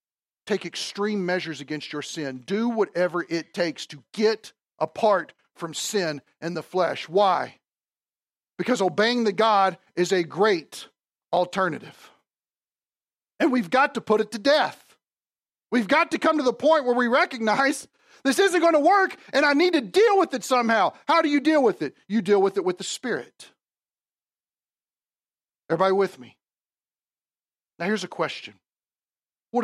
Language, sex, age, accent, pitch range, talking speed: English, male, 50-69, American, 155-225 Hz, 160 wpm